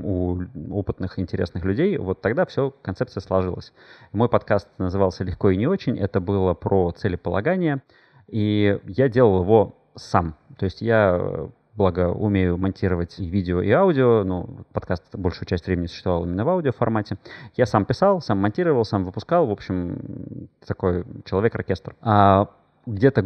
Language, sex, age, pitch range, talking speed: Russian, male, 30-49, 90-110 Hz, 145 wpm